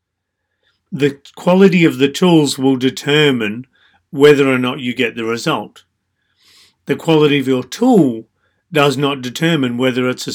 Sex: male